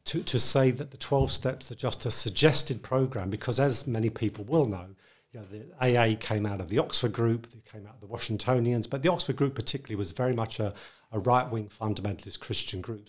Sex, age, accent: male, 50-69, British